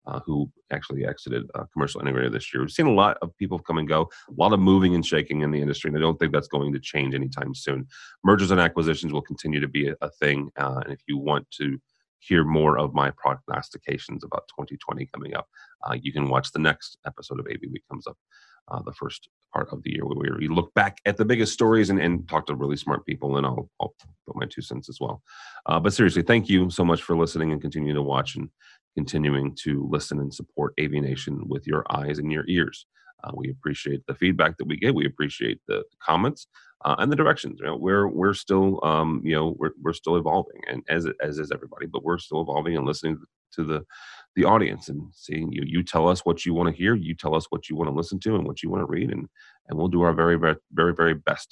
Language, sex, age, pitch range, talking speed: English, male, 30-49, 70-85 Hz, 245 wpm